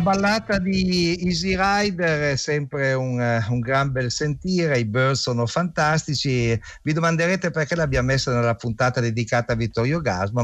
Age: 50-69